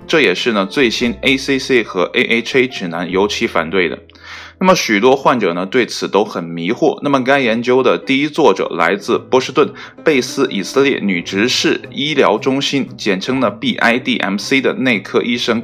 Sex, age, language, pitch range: male, 20-39, Chinese, 100-135 Hz